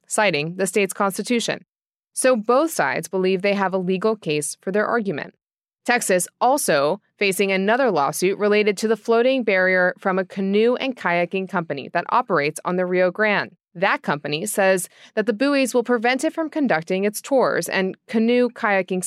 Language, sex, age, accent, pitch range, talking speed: English, female, 20-39, American, 185-245 Hz, 170 wpm